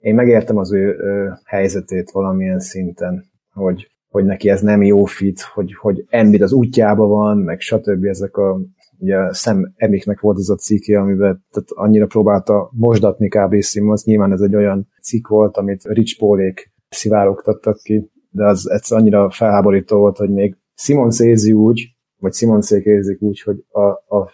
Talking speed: 155 wpm